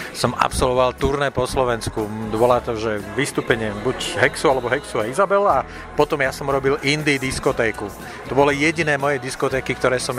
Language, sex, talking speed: Slovak, male, 165 wpm